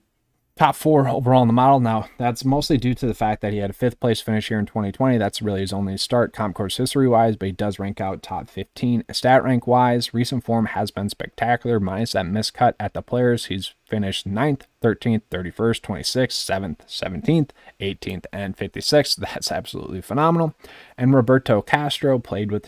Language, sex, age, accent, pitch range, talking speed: English, male, 20-39, American, 105-130 Hz, 190 wpm